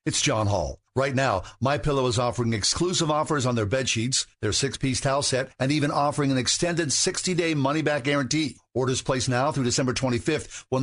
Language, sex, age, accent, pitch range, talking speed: English, male, 50-69, American, 120-150 Hz, 175 wpm